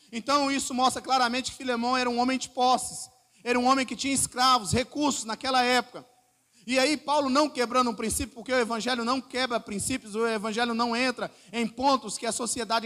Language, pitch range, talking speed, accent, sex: Portuguese, 195-255 Hz, 195 wpm, Brazilian, male